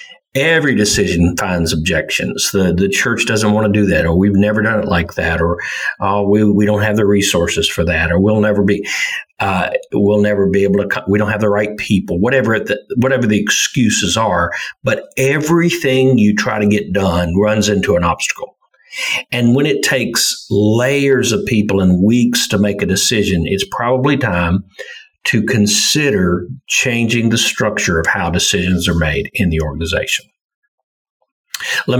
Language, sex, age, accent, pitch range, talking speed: English, male, 50-69, American, 95-115 Hz, 170 wpm